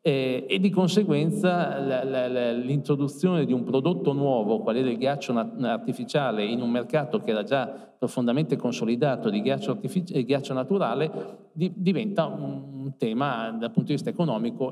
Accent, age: native, 50-69